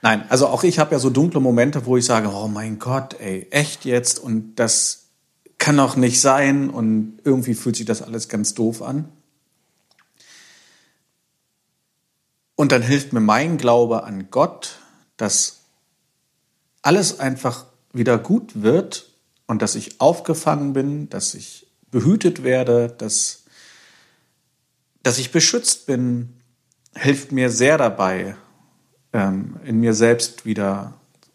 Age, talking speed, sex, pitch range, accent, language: 50-69, 130 wpm, male, 110-140 Hz, German, German